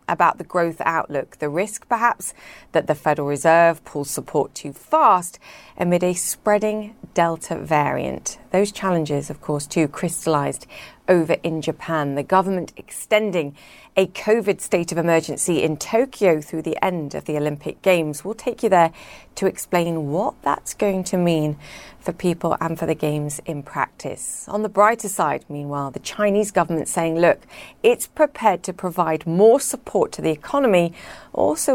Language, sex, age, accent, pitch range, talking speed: English, female, 30-49, British, 155-195 Hz, 160 wpm